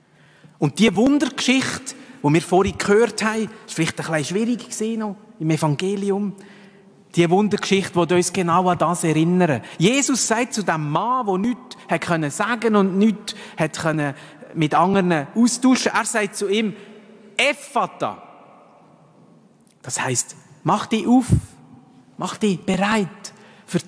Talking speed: 145 wpm